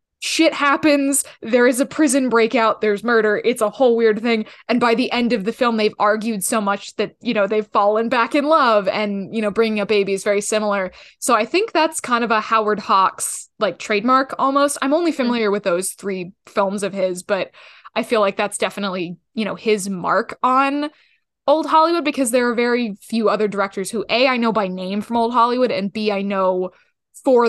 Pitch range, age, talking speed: 200-245 Hz, 20-39, 210 wpm